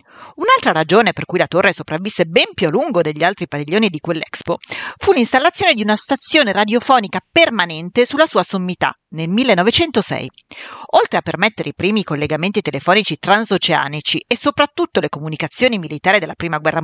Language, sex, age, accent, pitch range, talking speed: Italian, female, 40-59, native, 170-250 Hz, 155 wpm